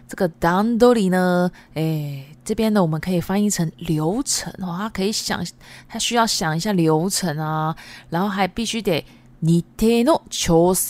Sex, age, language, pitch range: female, 20-39, Japanese, 155-215 Hz